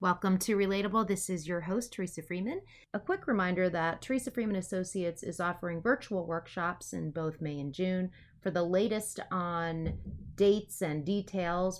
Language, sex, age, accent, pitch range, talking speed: English, female, 30-49, American, 165-205 Hz, 165 wpm